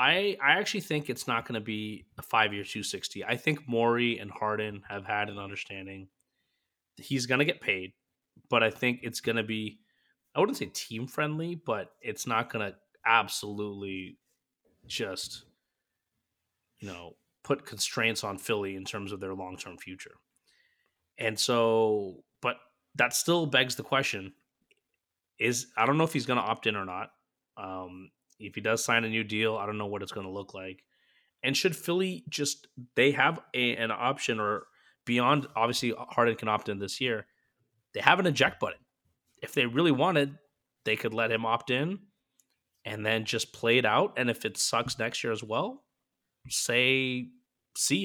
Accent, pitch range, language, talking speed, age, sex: American, 105-130 Hz, English, 175 wpm, 30-49, male